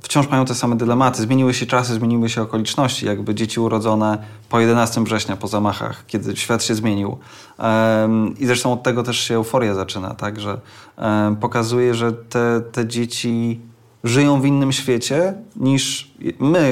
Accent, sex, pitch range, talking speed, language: native, male, 105-125 Hz, 160 wpm, Polish